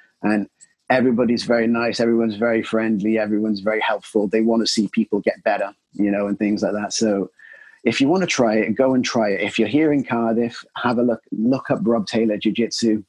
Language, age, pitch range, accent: English, 30-49, 105-130 Hz, British